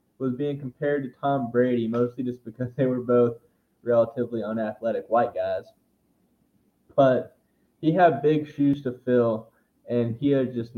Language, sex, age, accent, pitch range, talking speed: English, male, 20-39, American, 110-130 Hz, 150 wpm